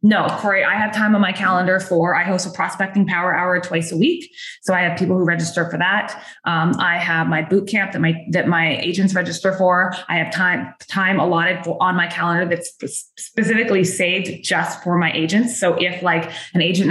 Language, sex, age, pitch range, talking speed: English, female, 20-39, 170-195 Hz, 215 wpm